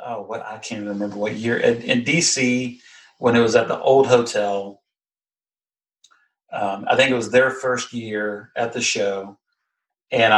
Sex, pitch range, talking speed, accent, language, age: male, 105-125 Hz, 170 wpm, American, English, 40-59